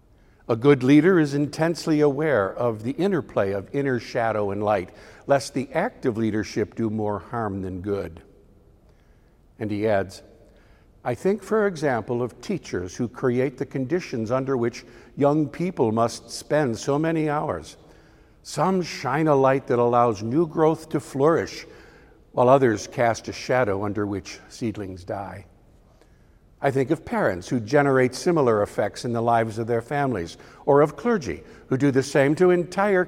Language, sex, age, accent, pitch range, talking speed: English, male, 60-79, American, 105-145 Hz, 160 wpm